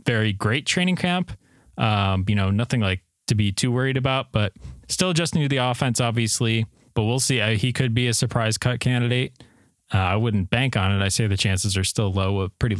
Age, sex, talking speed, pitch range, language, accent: 20-39, male, 210 wpm, 95-120 Hz, English, American